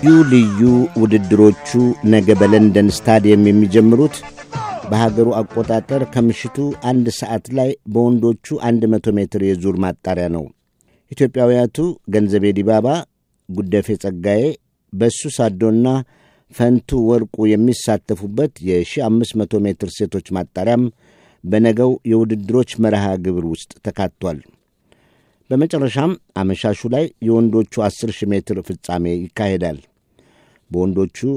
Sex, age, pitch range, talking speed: male, 50-69, 95-120 Hz, 85 wpm